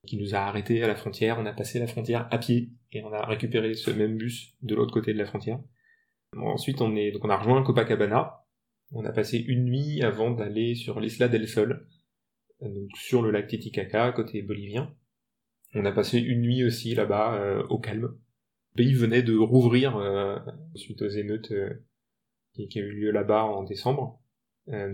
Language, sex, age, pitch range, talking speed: French, male, 20-39, 110-130 Hz, 195 wpm